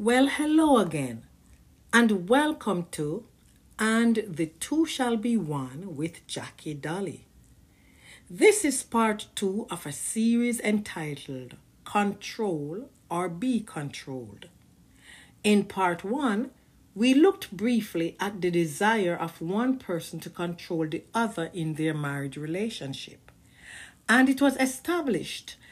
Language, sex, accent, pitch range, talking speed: English, female, Nigerian, 165-235 Hz, 120 wpm